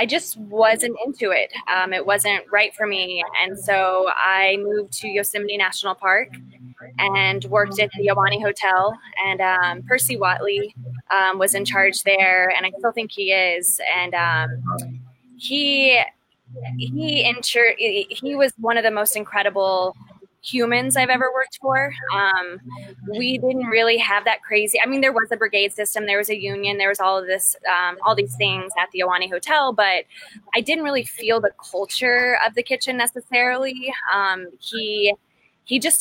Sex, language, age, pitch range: female, English, 20-39, 185-225 Hz